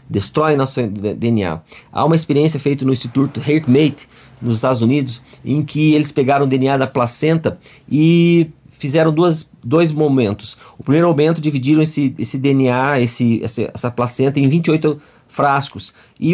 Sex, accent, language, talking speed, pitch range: male, Brazilian, Portuguese, 145 wpm, 130-160 Hz